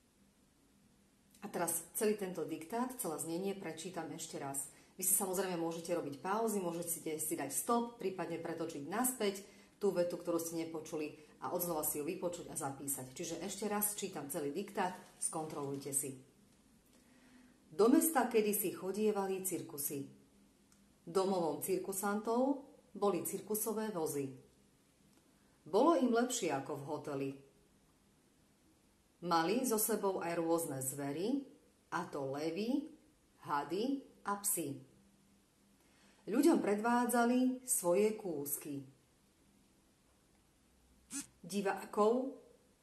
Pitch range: 155-225 Hz